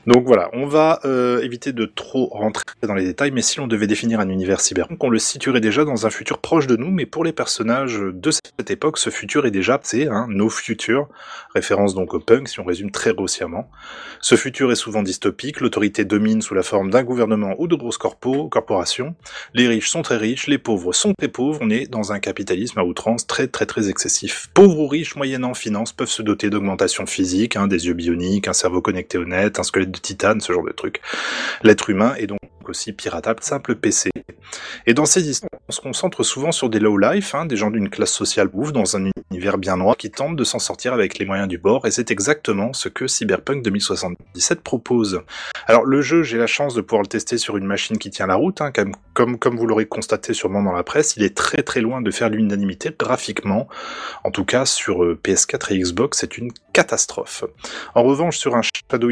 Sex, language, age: male, French, 20-39